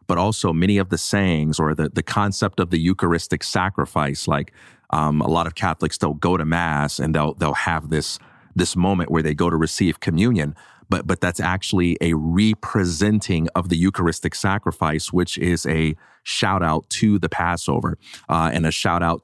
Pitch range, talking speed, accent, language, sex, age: 80-100 Hz, 185 wpm, American, English, male, 30-49